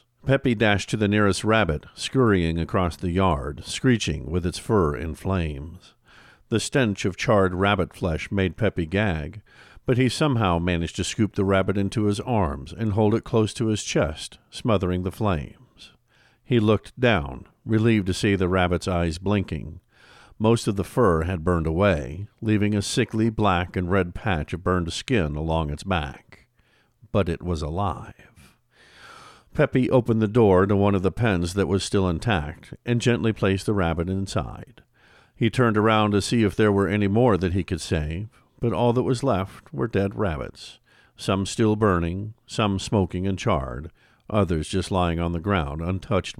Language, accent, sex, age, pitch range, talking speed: English, American, male, 50-69, 90-110 Hz, 175 wpm